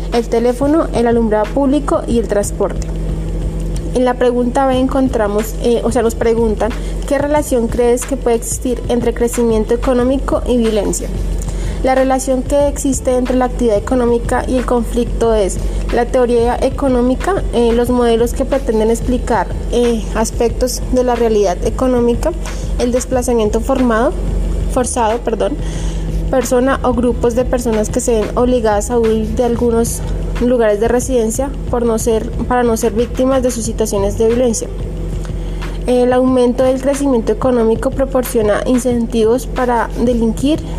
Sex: female